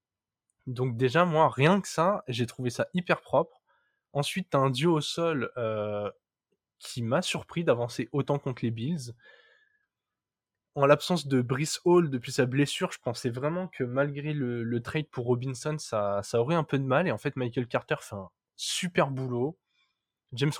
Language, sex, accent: French, male, French